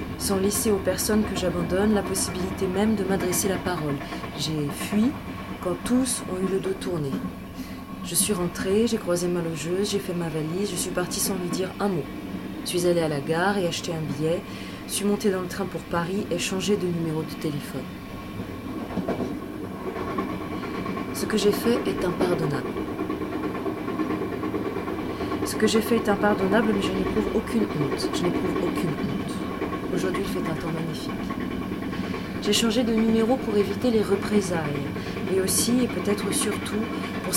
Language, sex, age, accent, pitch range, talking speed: French, female, 30-49, French, 175-220 Hz, 170 wpm